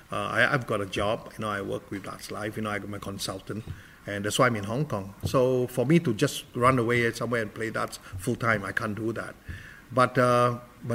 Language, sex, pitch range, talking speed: English, male, 110-145 Hz, 245 wpm